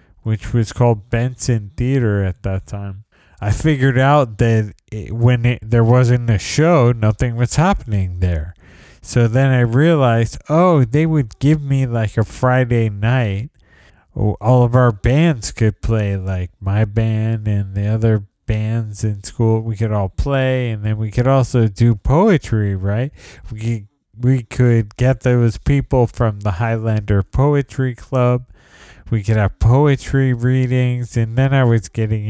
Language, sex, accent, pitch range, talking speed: English, male, American, 100-125 Hz, 150 wpm